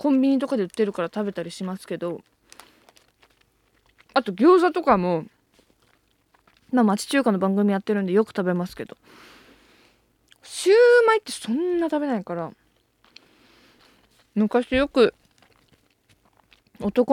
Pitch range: 210-285 Hz